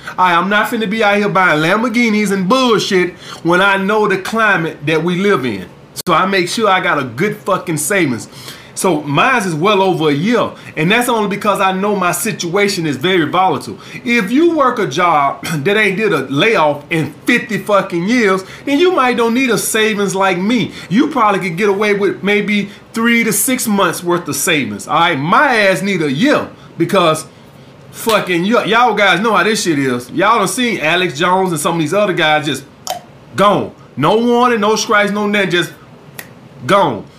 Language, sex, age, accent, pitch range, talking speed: English, male, 30-49, American, 170-215 Hz, 195 wpm